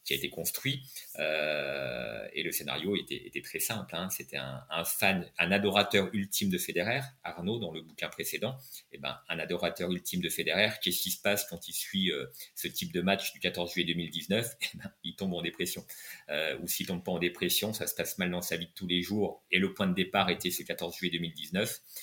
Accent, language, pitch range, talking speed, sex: French, French, 90-120 Hz, 230 wpm, male